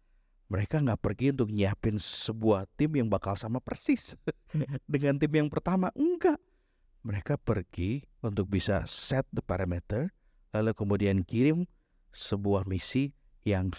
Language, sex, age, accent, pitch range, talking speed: Indonesian, male, 50-69, native, 105-150 Hz, 125 wpm